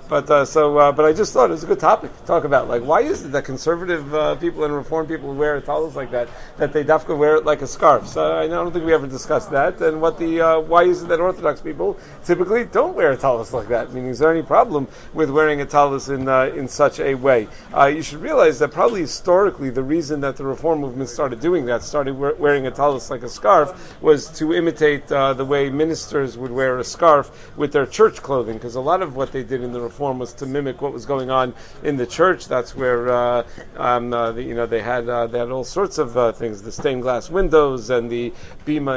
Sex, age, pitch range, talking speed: male, 40-59, 130-160 Hz, 255 wpm